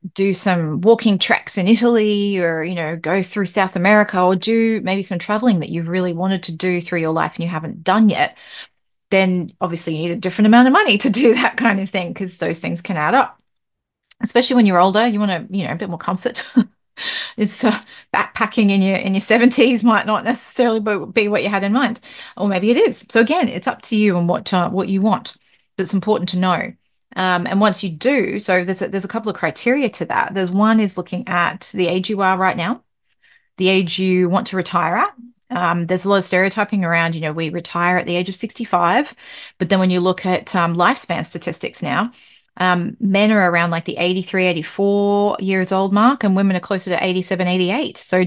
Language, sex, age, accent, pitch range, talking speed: English, female, 30-49, Australian, 180-220 Hz, 225 wpm